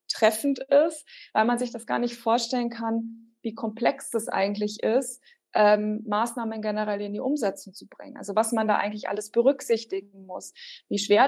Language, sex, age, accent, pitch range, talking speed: German, female, 20-39, German, 205-245 Hz, 175 wpm